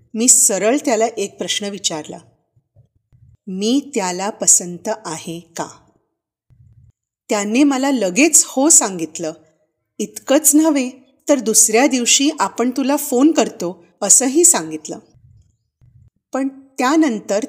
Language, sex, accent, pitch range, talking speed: Marathi, female, native, 170-250 Hz, 100 wpm